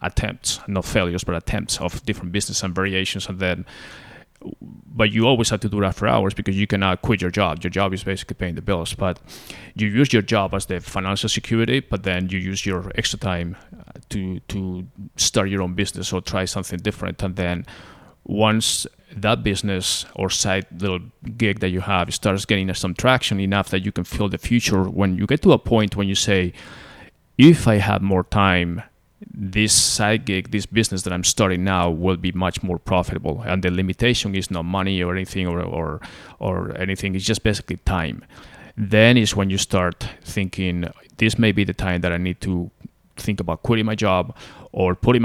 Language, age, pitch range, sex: English, 30-49, 90-105 Hz, male